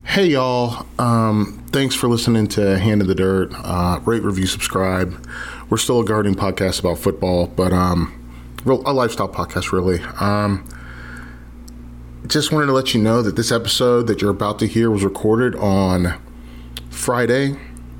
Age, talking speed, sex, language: 30-49, 160 wpm, male, English